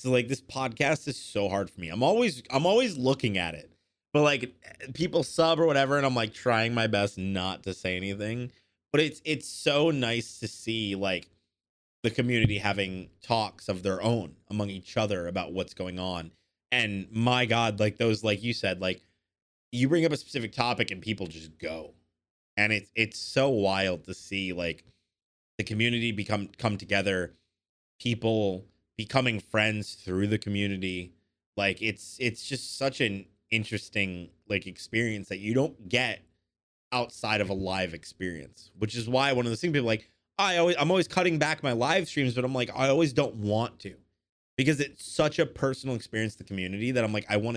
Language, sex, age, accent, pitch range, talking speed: English, male, 30-49, American, 95-125 Hz, 190 wpm